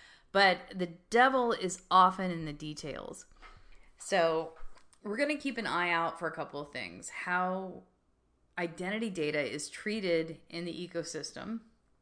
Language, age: English, 30-49